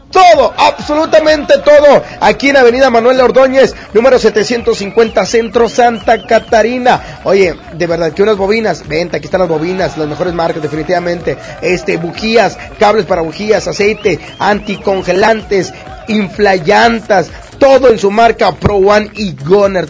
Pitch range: 210-270 Hz